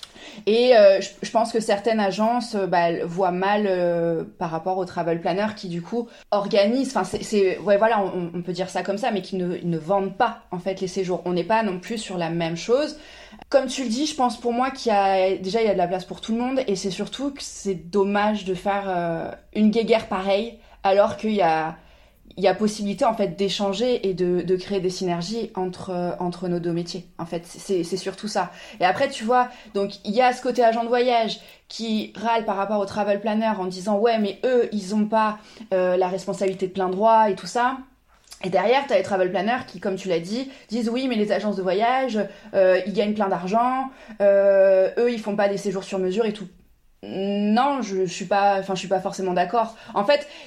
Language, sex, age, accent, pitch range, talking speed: French, female, 20-39, French, 185-230 Hz, 235 wpm